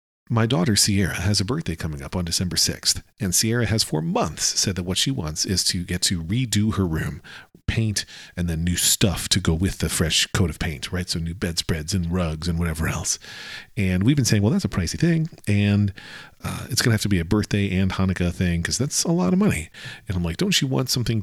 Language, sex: English, male